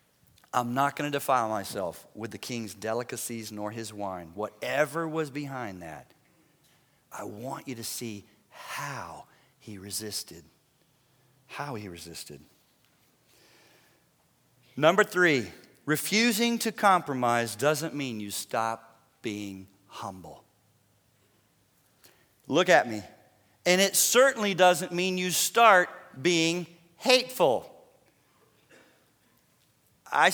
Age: 40-59